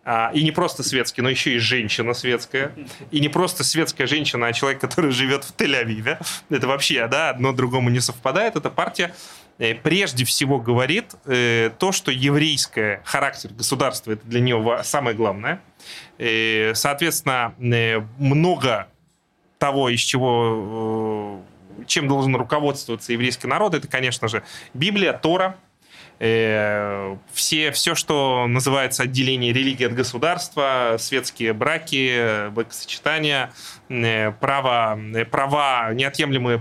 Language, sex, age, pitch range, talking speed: Russian, male, 20-39, 120-150 Hz, 130 wpm